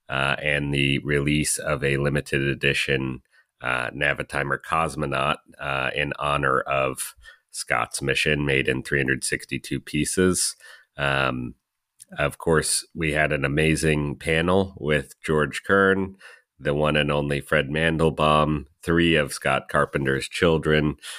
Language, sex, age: English, male, 30-49